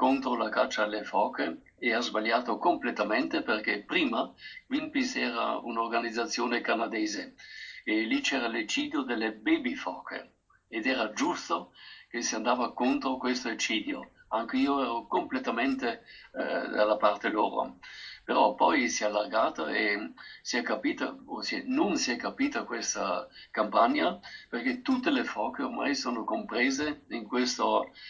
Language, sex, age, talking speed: Italian, male, 50-69, 135 wpm